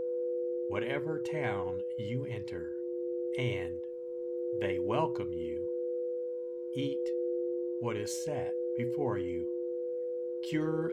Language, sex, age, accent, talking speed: English, male, 50-69, American, 80 wpm